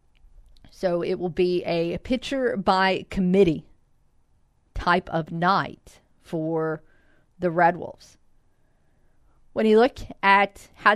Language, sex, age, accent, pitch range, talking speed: English, female, 40-59, American, 175-220 Hz, 100 wpm